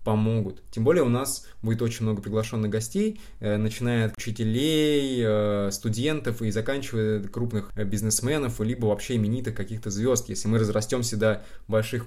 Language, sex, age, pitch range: Russian, male, 20-39, 105-120 Hz